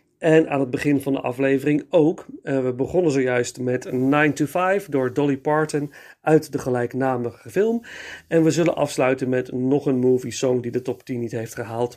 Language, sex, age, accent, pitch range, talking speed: Dutch, male, 40-59, Dutch, 130-160 Hz, 190 wpm